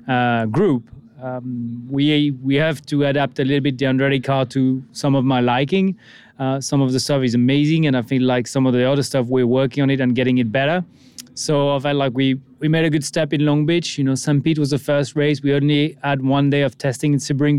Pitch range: 130-145 Hz